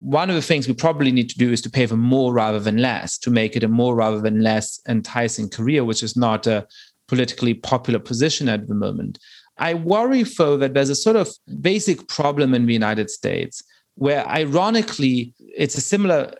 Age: 30-49